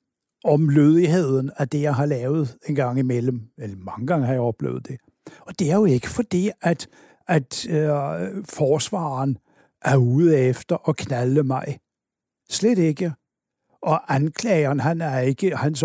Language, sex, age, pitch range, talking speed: Danish, male, 60-79, 130-160 Hz, 155 wpm